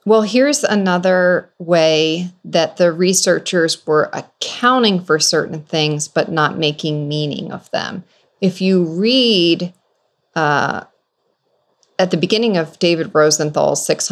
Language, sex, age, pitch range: English, female, 40-59, 160-210 Hz